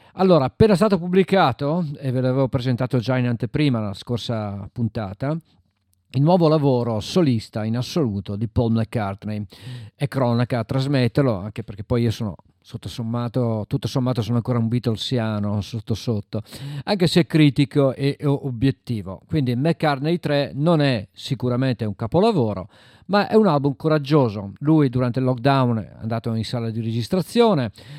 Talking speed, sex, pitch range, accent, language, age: 145 wpm, male, 115-145 Hz, native, Italian, 50-69